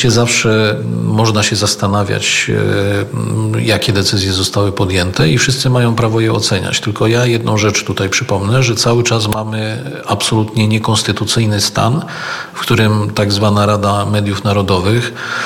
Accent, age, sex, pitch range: native, 40-59, male, 105-115 Hz